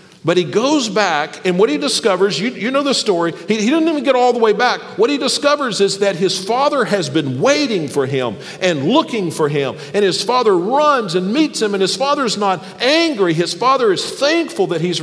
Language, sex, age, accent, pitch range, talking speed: English, male, 50-69, American, 155-245 Hz, 225 wpm